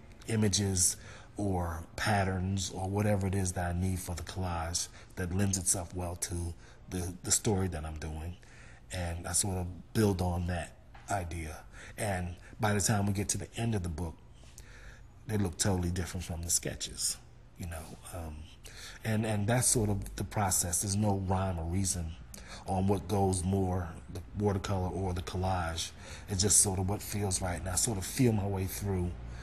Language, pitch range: English, 85-105 Hz